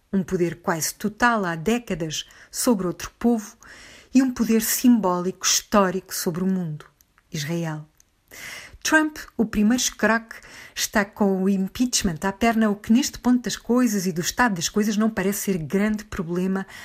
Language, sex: Portuguese, female